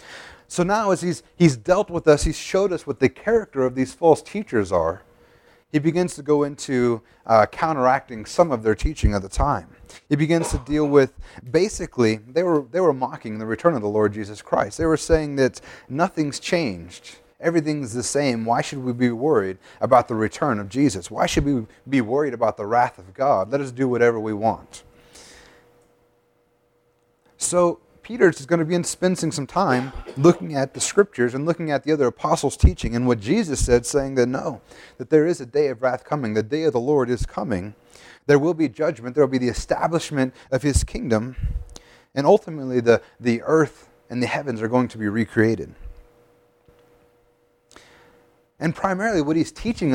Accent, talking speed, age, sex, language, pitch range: American, 190 wpm, 30-49, male, English, 120-155 Hz